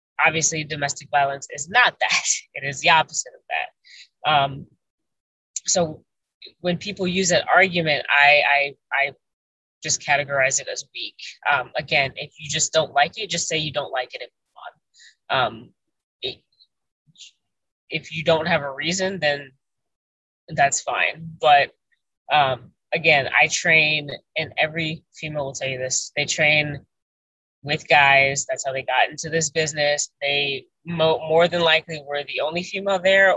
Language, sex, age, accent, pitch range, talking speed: English, female, 20-39, American, 130-160 Hz, 150 wpm